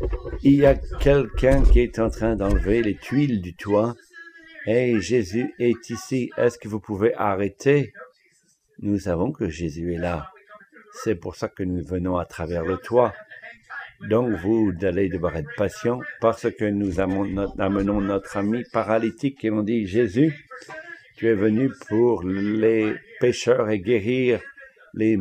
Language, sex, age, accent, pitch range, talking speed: English, male, 60-79, French, 100-140 Hz, 150 wpm